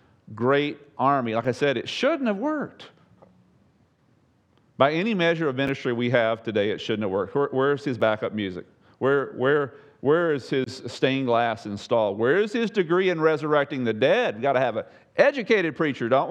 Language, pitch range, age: English, 115-175 Hz, 40-59